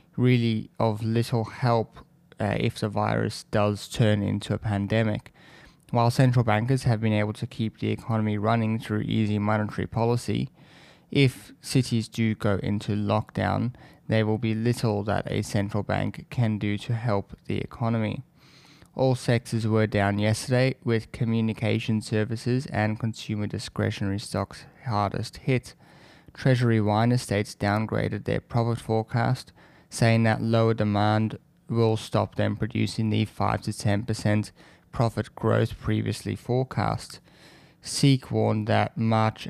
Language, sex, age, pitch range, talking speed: English, male, 20-39, 105-120 Hz, 135 wpm